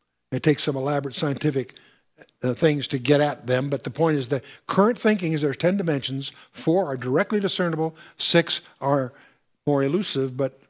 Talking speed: 175 wpm